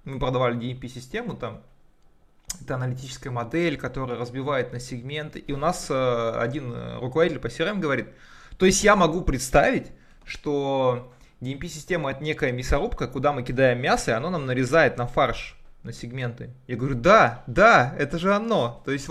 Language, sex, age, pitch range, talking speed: Russian, male, 20-39, 120-155 Hz, 160 wpm